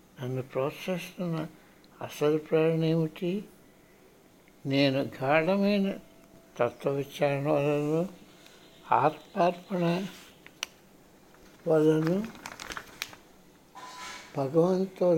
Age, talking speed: 60-79, 50 wpm